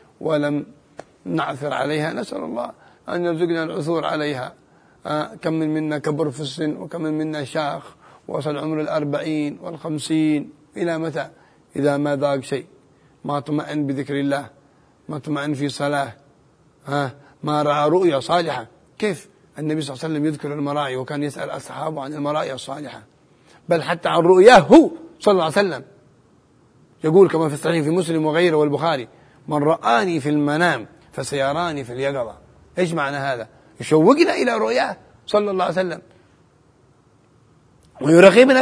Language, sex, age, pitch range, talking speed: Arabic, male, 30-49, 145-185 Hz, 145 wpm